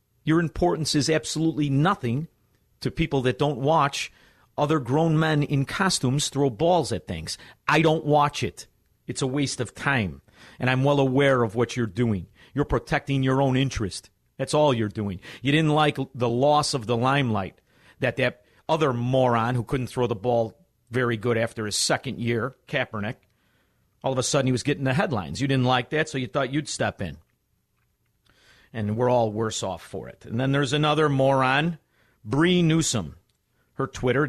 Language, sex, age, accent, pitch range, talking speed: English, male, 50-69, American, 110-145 Hz, 180 wpm